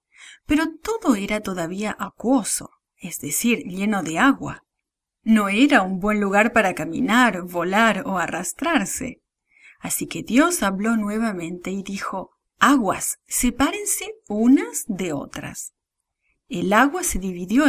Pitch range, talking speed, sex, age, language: 195-280 Hz, 120 wpm, female, 30-49, English